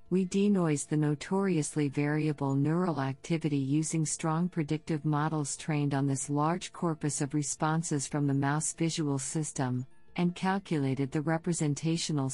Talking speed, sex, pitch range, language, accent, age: 130 wpm, female, 135-160 Hz, English, American, 50-69